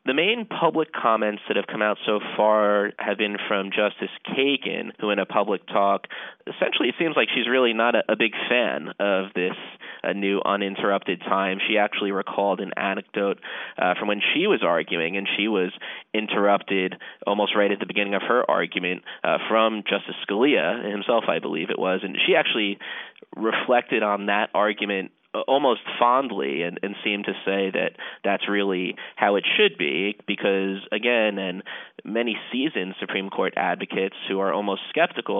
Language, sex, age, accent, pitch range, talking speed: English, male, 30-49, American, 95-105 Hz, 170 wpm